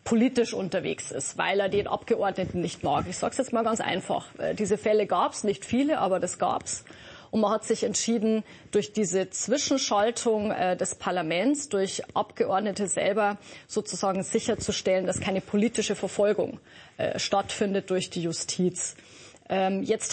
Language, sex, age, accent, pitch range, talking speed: German, female, 30-49, German, 185-225 Hz, 150 wpm